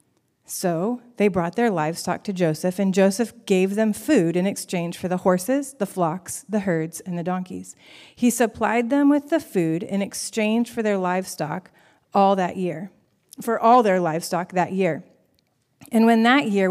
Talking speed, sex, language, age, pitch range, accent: 170 wpm, female, English, 30-49, 185-230 Hz, American